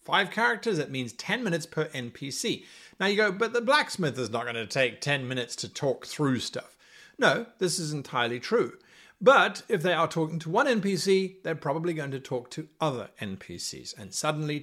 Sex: male